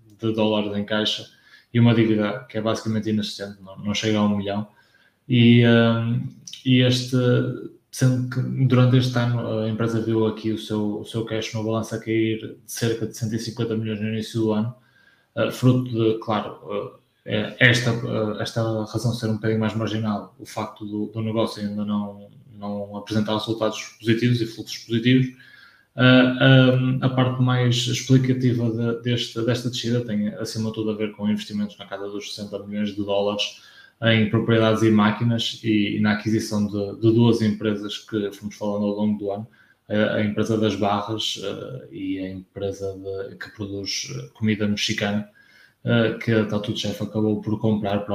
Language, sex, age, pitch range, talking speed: Portuguese, male, 20-39, 105-120 Hz, 170 wpm